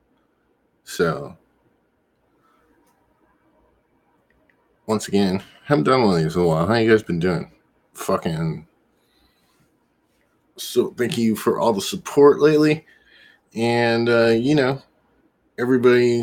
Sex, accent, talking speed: male, American, 110 wpm